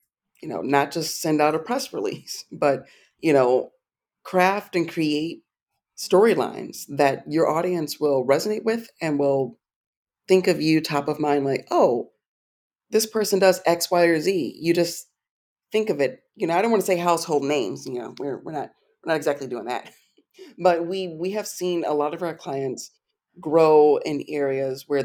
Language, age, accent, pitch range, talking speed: English, 40-59, American, 140-180 Hz, 185 wpm